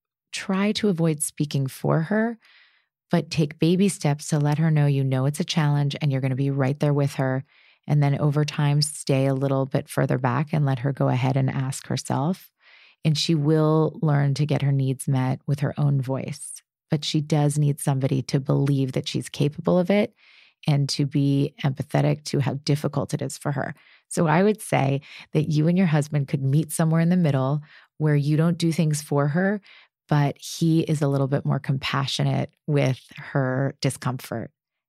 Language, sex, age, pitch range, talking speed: English, female, 30-49, 140-155 Hz, 195 wpm